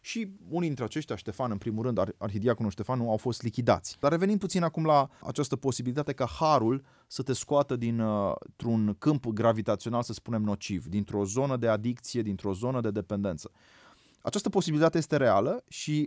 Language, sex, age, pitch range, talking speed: Romanian, male, 30-49, 110-145 Hz, 165 wpm